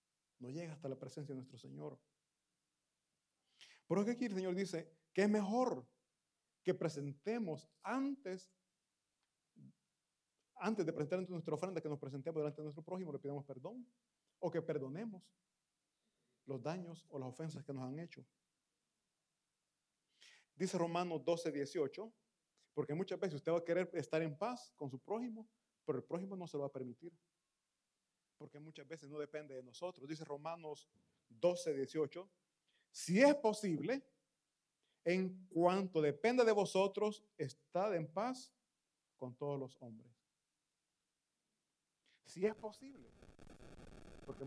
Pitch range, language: 145-190 Hz, Italian